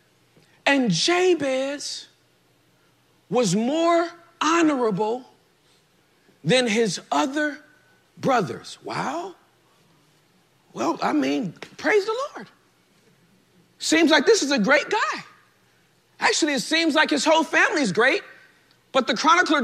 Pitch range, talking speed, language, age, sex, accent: 260-335 Hz, 105 wpm, English, 40-59, male, American